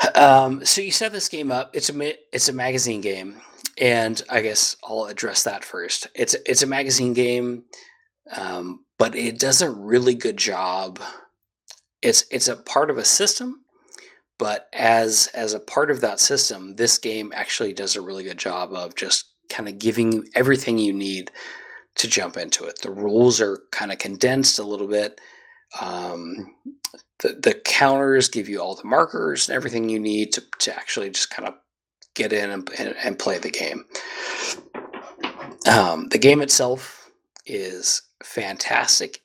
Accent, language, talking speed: American, English, 170 wpm